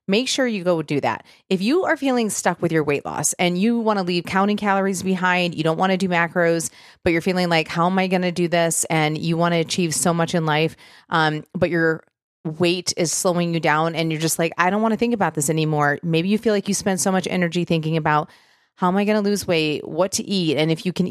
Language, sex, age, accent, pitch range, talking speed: English, female, 30-49, American, 160-195 Hz, 265 wpm